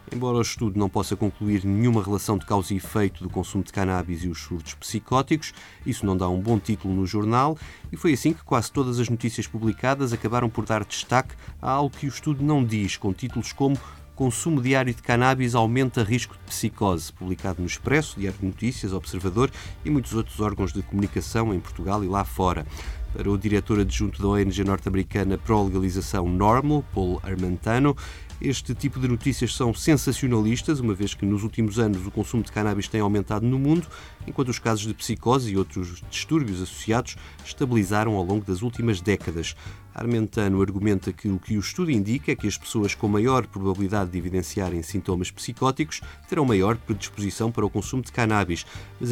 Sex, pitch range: male, 95-120 Hz